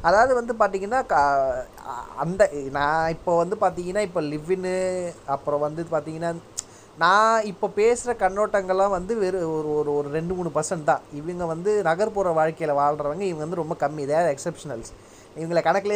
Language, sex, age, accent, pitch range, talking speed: Tamil, male, 20-39, native, 155-210 Hz, 135 wpm